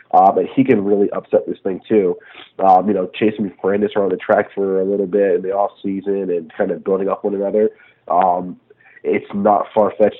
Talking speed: 220 wpm